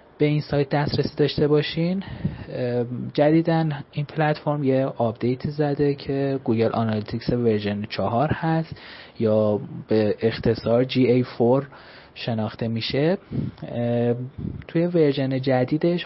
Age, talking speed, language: 30-49, 100 wpm, Persian